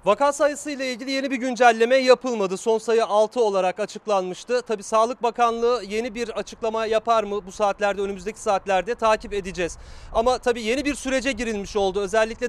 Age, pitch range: 40-59, 210-260 Hz